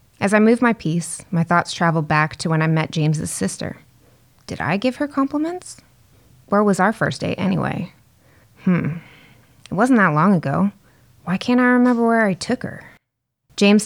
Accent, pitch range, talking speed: American, 150-185 Hz, 180 wpm